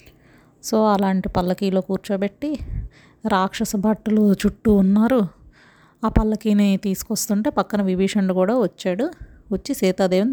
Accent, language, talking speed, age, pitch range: native, Telugu, 100 wpm, 30-49, 185-210 Hz